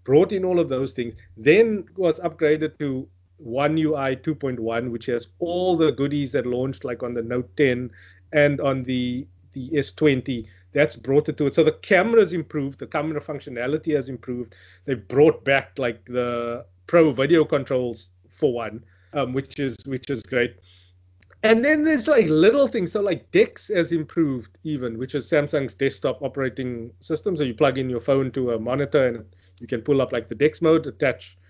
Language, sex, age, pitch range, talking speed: English, male, 30-49, 120-165 Hz, 185 wpm